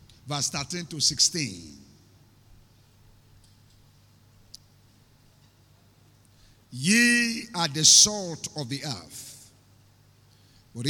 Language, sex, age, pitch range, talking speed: English, male, 50-69, 110-170 Hz, 65 wpm